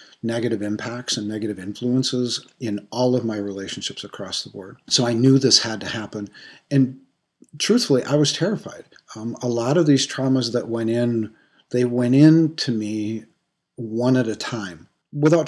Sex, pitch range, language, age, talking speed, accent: male, 105-125 Hz, English, 40-59, 170 wpm, American